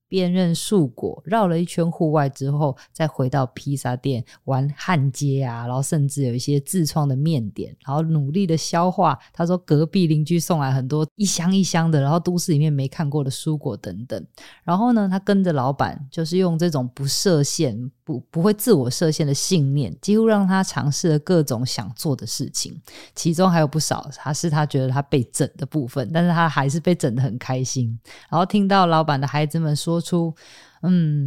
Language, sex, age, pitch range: Chinese, female, 20-39, 140-175 Hz